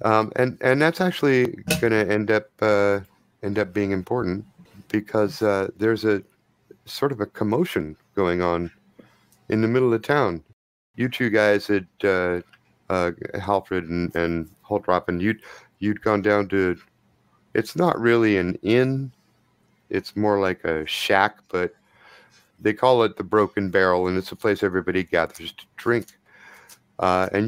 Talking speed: 160 wpm